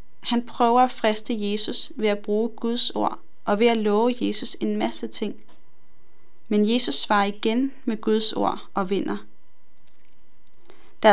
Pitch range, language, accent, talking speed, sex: 200-250 Hz, Danish, native, 150 wpm, female